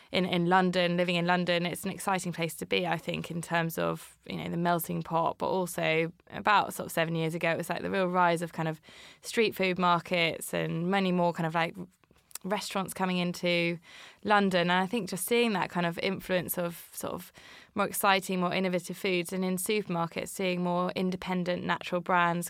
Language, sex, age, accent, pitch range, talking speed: English, female, 20-39, British, 170-195 Hz, 205 wpm